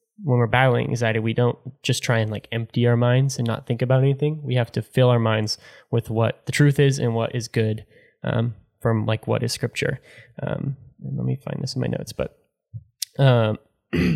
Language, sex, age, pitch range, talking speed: English, male, 10-29, 115-130 Hz, 210 wpm